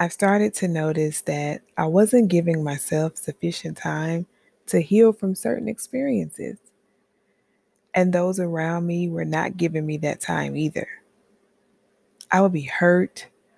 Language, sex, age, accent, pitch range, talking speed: English, female, 20-39, American, 155-200 Hz, 135 wpm